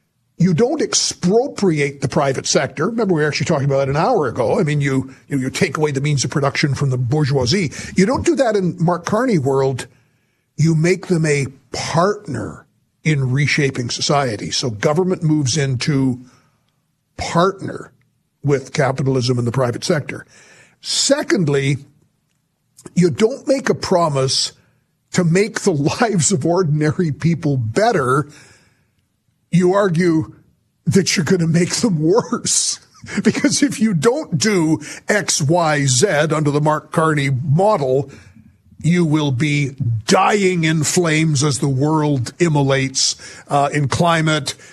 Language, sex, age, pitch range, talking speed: English, male, 50-69, 135-170 Hz, 145 wpm